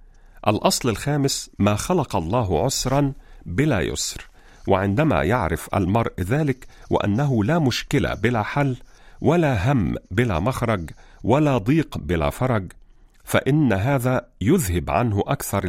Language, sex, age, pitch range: Arabic, male, 50-69, 95-140 Hz